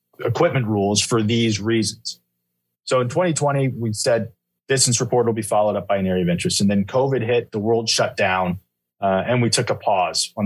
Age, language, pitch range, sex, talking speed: 30-49, English, 100-125 Hz, male, 205 wpm